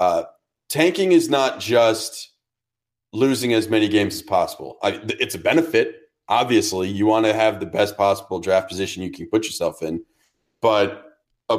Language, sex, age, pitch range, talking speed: English, male, 30-49, 105-125 Hz, 160 wpm